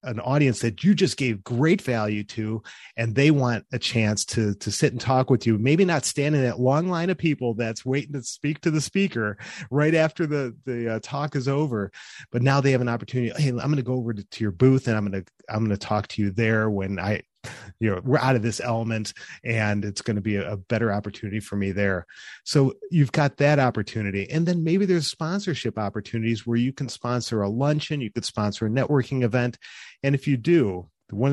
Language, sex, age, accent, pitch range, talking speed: English, male, 30-49, American, 120-165 Hz, 230 wpm